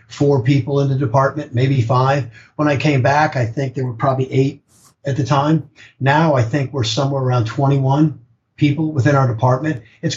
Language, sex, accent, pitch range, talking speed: English, male, American, 125-150 Hz, 190 wpm